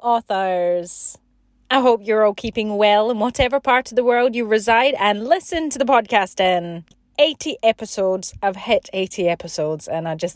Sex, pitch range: female, 185-270 Hz